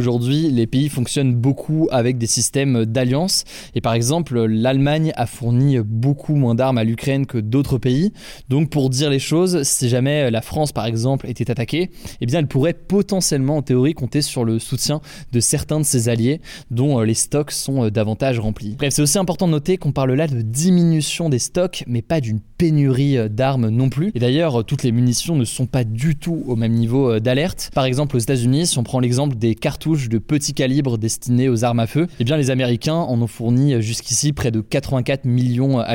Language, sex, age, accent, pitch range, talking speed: French, male, 20-39, French, 120-150 Hz, 210 wpm